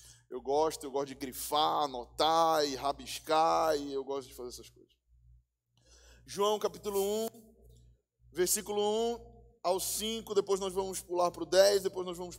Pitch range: 155-220 Hz